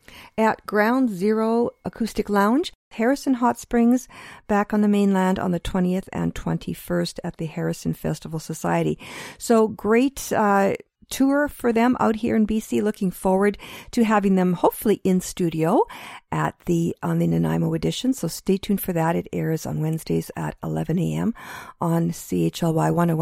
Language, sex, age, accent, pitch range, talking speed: English, female, 50-69, American, 165-230 Hz, 155 wpm